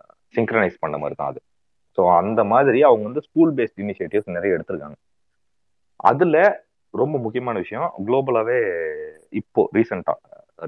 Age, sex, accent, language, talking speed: 30-49, male, native, Tamil, 125 wpm